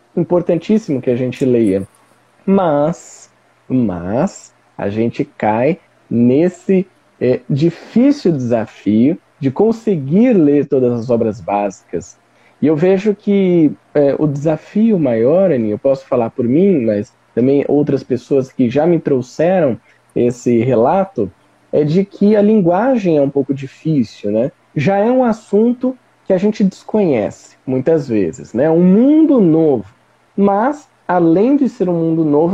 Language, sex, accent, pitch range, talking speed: Portuguese, male, Brazilian, 130-195 Hz, 140 wpm